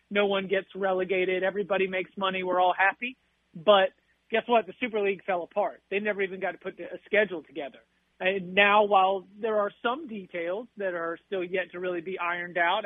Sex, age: male, 40-59